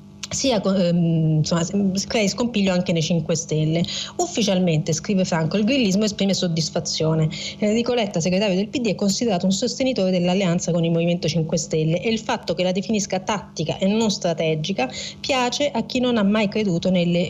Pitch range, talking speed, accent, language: 175-220 Hz, 165 wpm, native, Italian